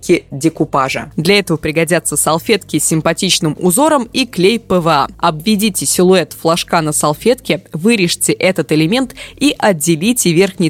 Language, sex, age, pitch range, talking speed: Russian, female, 20-39, 165-215 Hz, 125 wpm